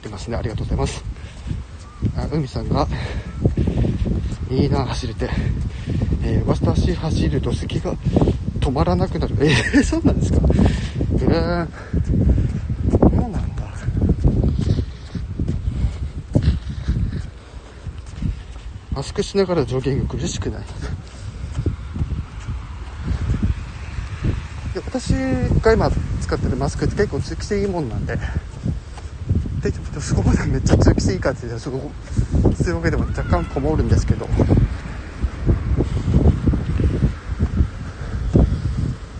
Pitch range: 80-115 Hz